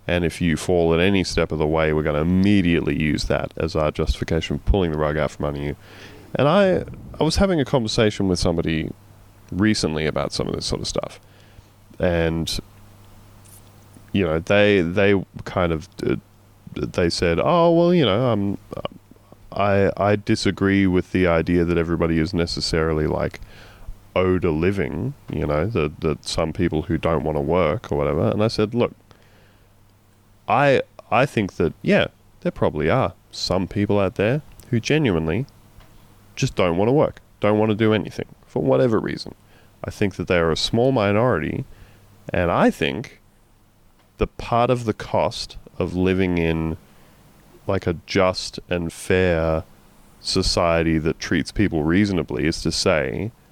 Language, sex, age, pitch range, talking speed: English, male, 20-39, 85-105 Hz, 165 wpm